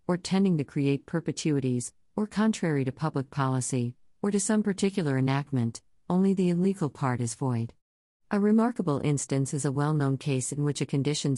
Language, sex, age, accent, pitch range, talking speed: English, female, 50-69, American, 130-160 Hz, 170 wpm